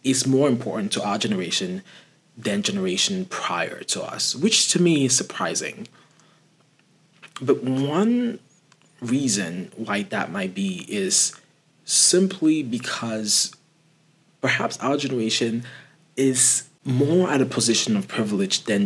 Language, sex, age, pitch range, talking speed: English, male, 20-39, 115-190 Hz, 120 wpm